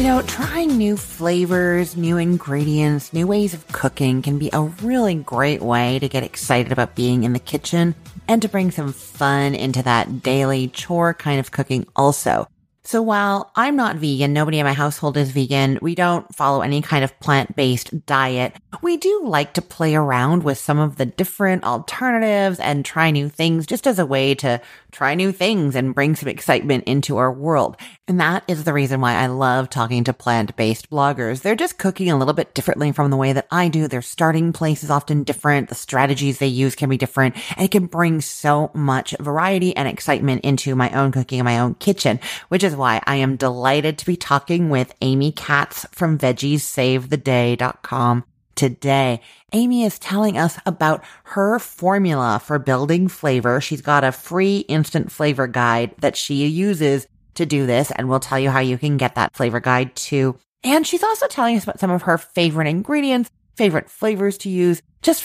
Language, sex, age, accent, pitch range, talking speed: English, female, 30-49, American, 135-175 Hz, 190 wpm